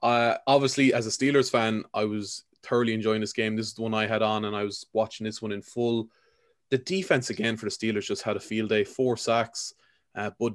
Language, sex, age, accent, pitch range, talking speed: English, male, 20-39, Irish, 110-120 Hz, 240 wpm